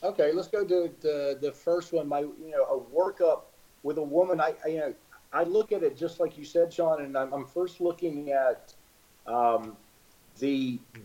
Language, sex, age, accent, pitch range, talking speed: English, male, 50-69, American, 125-180 Hz, 200 wpm